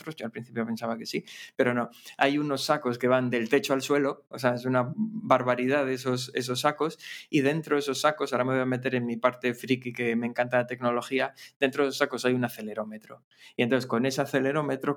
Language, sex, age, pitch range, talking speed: Spanish, male, 20-39, 125-140 Hz, 225 wpm